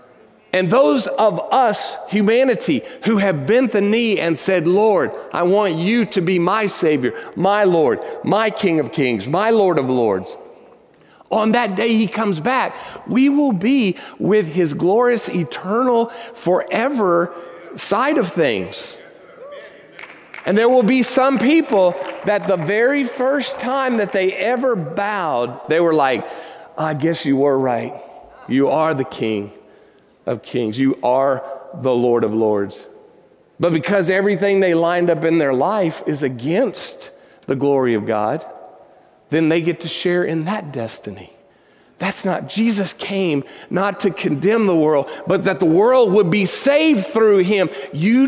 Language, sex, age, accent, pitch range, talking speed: English, male, 40-59, American, 155-225 Hz, 155 wpm